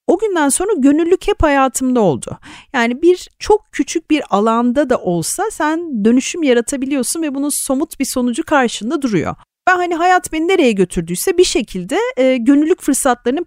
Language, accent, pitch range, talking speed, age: Turkish, native, 215-335 Hz, 160 wpm, 40-59